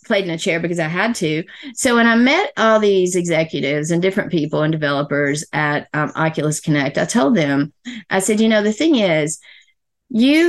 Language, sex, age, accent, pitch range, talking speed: English, female, 40-59, American, 165-220 Hz, 200 wpm